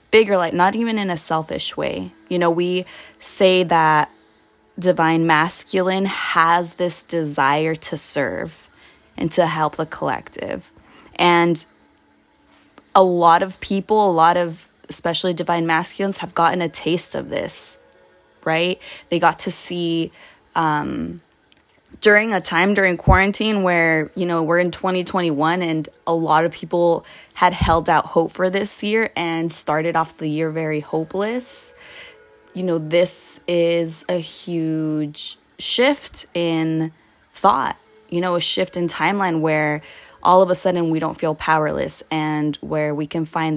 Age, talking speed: 20-39, 145 wpm